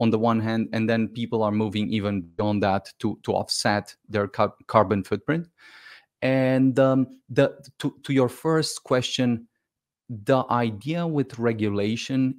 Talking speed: 145 wpm